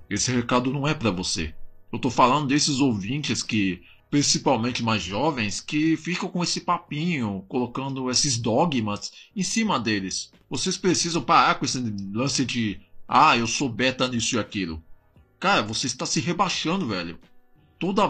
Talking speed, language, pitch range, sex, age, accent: 155 wpm, Portuguese, 105-155 Hz, male, 20-39, Brazilian